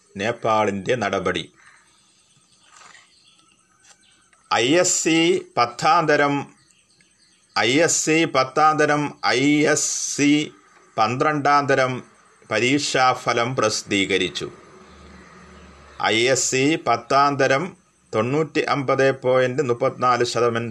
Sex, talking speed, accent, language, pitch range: male, 45 wpm, native, Malayalam, 120-155 Hz